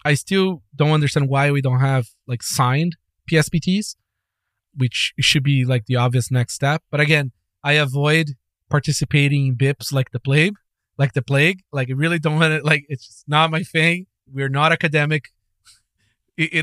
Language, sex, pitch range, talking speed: English, male, 130-170 Hz, 175 wpm